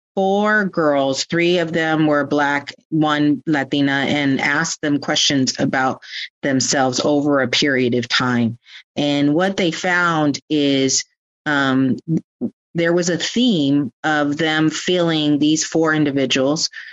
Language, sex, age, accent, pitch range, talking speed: English, female, 40-59, American, 135-155 Hz, 130 wpm